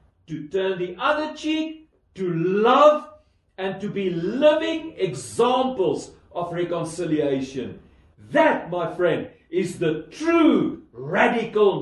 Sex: male